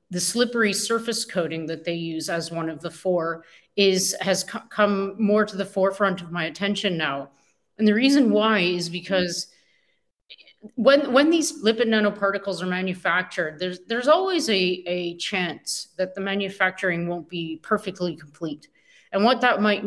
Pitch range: 170-200 Hz